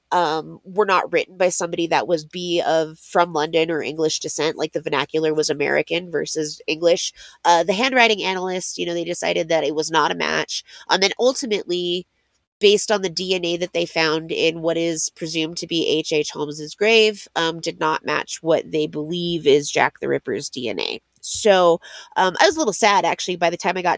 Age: 20-39